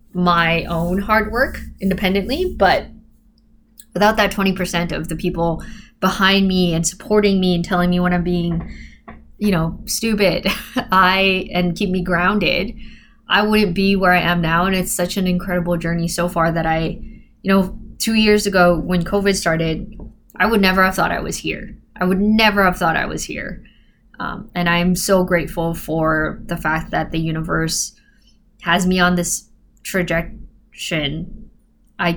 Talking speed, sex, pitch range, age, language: 170 wpm, female, 175-200 Hz, 20-39, English